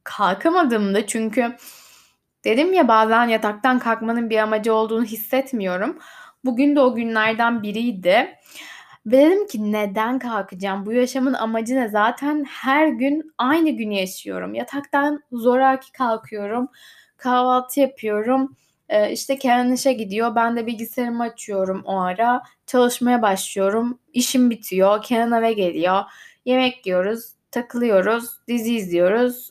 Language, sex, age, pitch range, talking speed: Turkish, female, 10-29, 200-250 Hz, 120 wpm